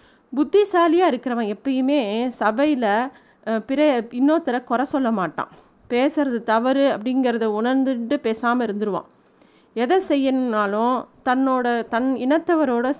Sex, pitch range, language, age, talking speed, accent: female, 210-270 Hz, Tamil, 30-49, 90 wpm, native